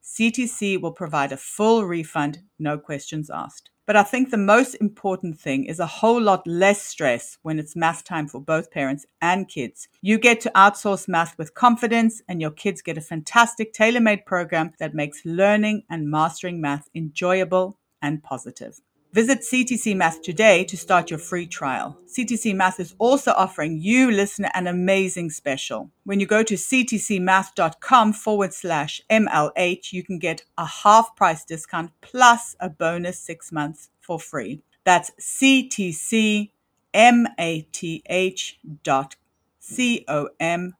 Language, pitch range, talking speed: English, 160-220 Hz, 145 wpm